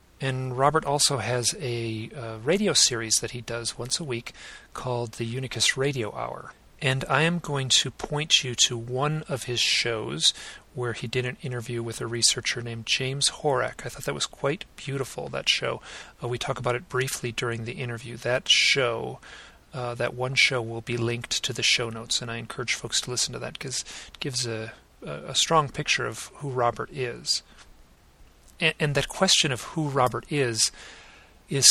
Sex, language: male, English